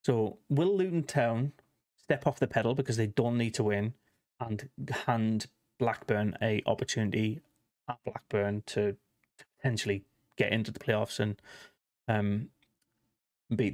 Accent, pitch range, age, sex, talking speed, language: British, 110-135 Hz, 30-49, male, 130 wpm, English